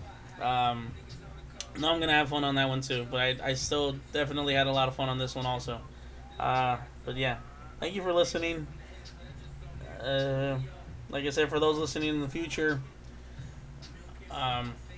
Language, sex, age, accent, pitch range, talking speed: English, male, 20-39, American, 120-145 Hz, 170 wpm